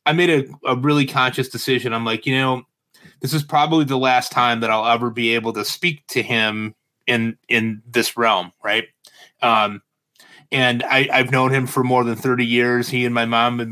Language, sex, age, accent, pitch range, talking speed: English, male, 30-49, American, 115-135 Hz, 205 wpm